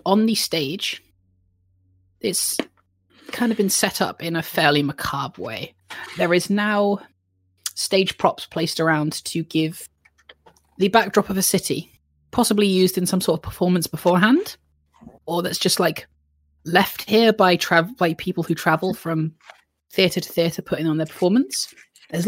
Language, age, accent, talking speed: English, 20-39, British, 155 wpm